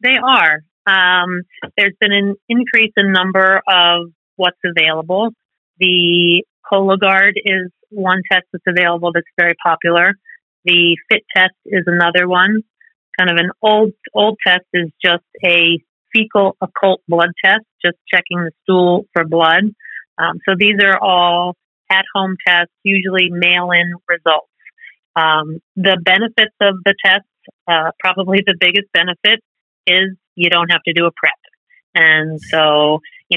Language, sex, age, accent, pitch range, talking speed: English, female, 30-49, American, 165-195 Hz, 145 wpm